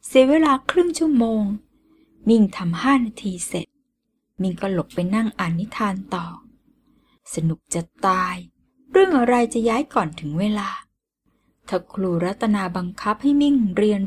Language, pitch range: Thai, 185-250 Hz